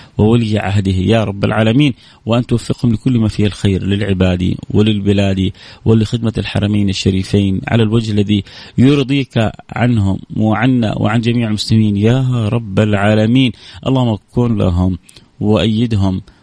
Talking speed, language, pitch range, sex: 115 wpm, Arabic, 100-125 Hz, male